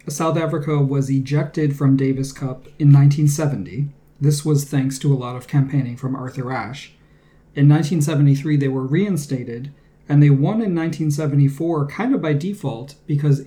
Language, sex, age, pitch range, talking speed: English, male, 30-49, 135-150 Hz, 155 wpm